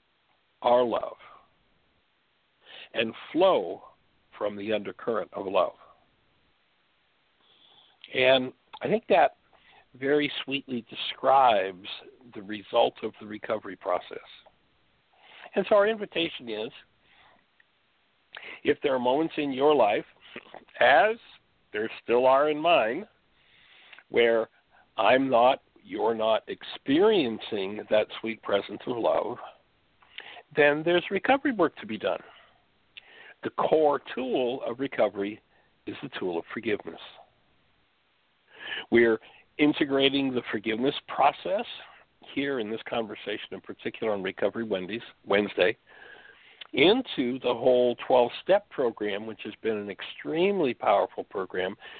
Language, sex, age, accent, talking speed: English, male, 60-79, American, 110 wpm